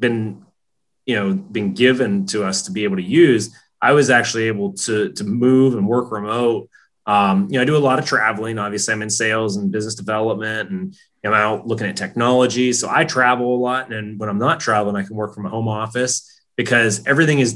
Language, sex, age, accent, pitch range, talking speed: English, male, 30-49, American, 110-135 Hz, 225 wpm